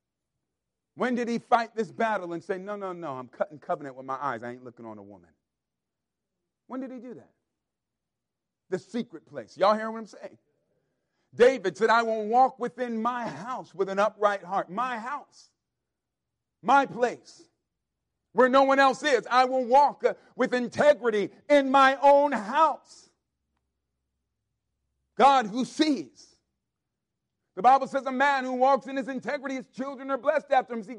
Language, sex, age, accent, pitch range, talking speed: English, male, 40-59, American, 210-285 Hz, 165 wpm